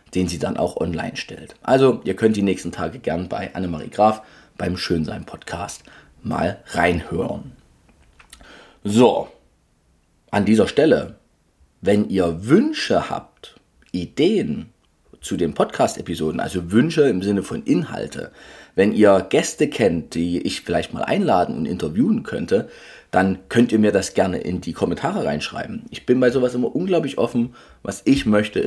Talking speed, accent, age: 145 wpm, German, 30-49